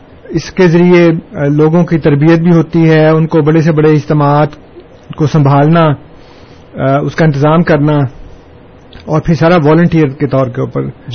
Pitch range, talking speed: 140-165 Hz, 160 wpm